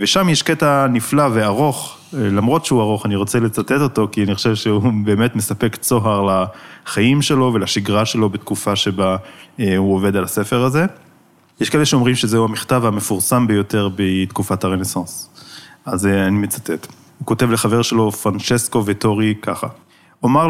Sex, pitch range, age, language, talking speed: male, 105-130 Hz, 20-39, Hebrew, 145 wpm